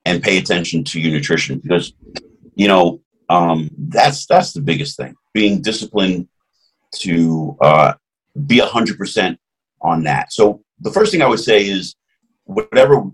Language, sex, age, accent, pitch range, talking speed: English, male, 40-59, American, 85-105 Hz, 155 wpm